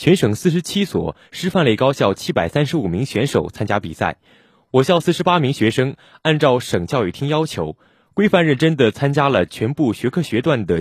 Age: 20-39